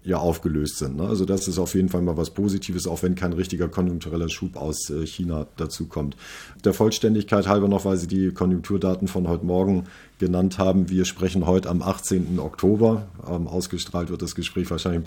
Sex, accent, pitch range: male, German, 90-100 Hz